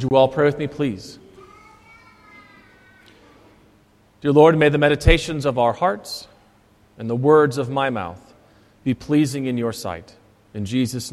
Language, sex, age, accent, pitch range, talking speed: English, male, 40-59, American, 115-165 Hz, 150 wpm